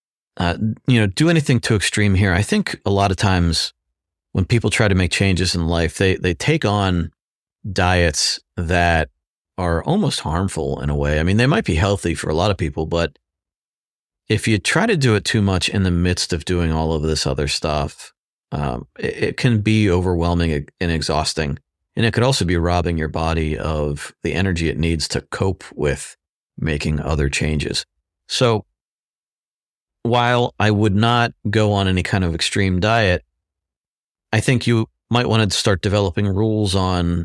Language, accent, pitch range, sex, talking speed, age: English, American, 80-105 Hz, male, 180 wpm, 40-59